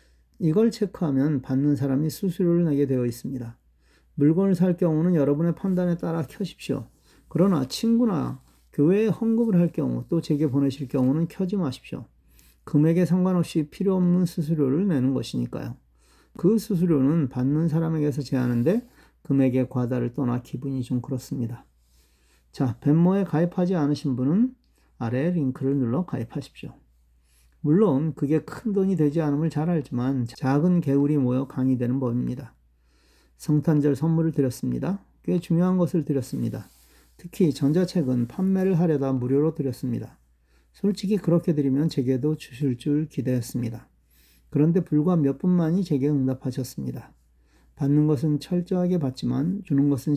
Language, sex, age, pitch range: Korean, male, 40-59, 125-170 Hz